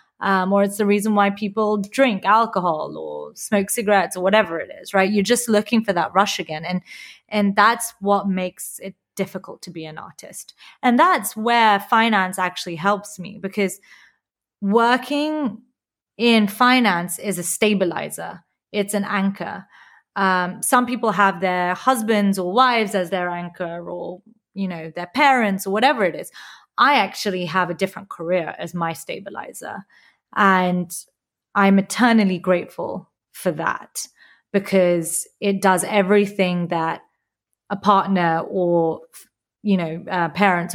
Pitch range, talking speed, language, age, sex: 185-225 Hz, 145 wpm, English, 30-49, female